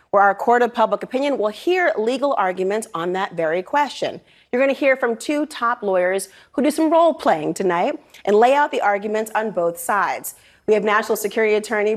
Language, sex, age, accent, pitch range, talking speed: English, female, 30-49, American, 195-265 Hz, 205 wpm